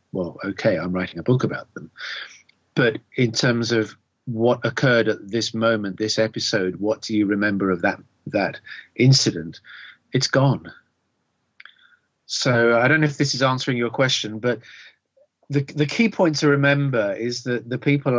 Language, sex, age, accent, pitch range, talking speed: English, male, 40-59, British, 110-135 Hz, 165 wpm